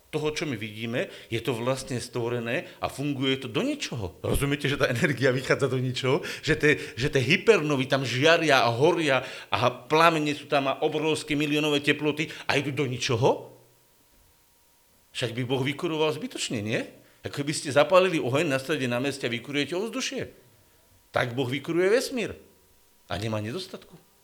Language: Slovak